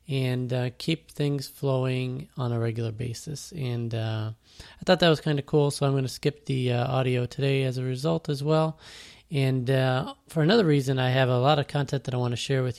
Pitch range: 120-145 Hz